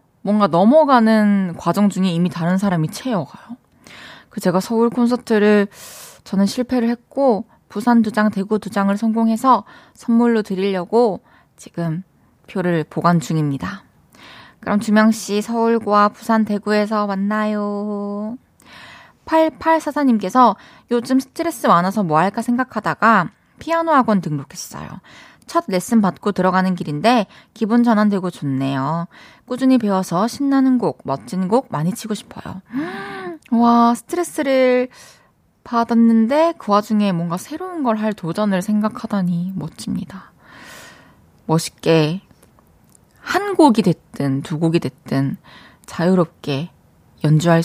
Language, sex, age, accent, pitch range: Korean, female, 20-39, native, 175-235 Hz